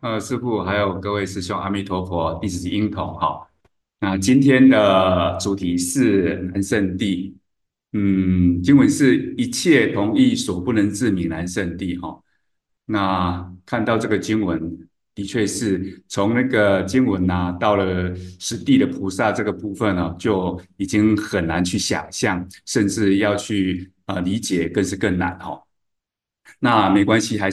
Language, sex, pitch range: Chinese, male, 95-125 Hz